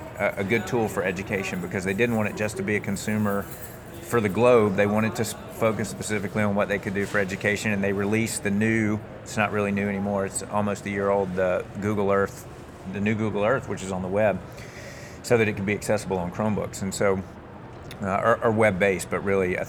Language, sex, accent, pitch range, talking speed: English, male, American, 95-110 Hz, 225 wpm